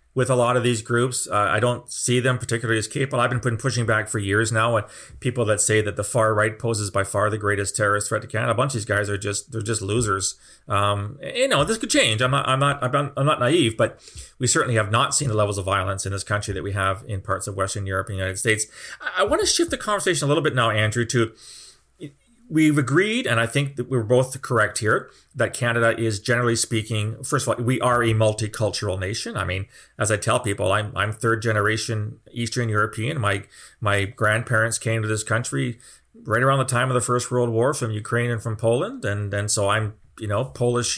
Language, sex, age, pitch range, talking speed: English, male, 30-49, 105-130 Hz, 230 wpm